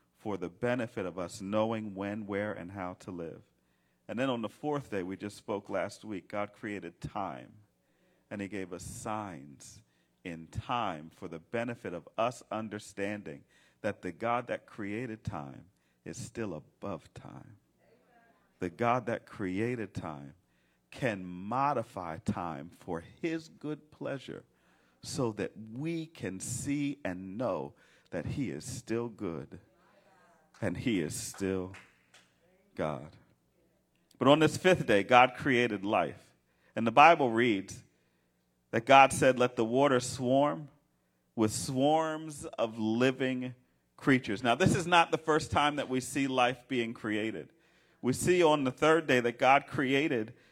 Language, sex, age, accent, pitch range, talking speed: English, male, 50-69, American, 95-135 Hz, 145 wpm